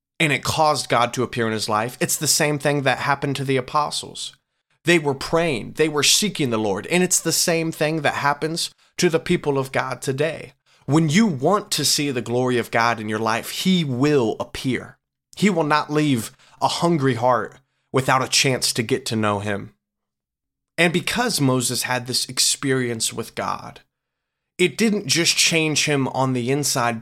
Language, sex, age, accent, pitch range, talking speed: English, male, 20-39, American, 115-155 Hz, 190 wpm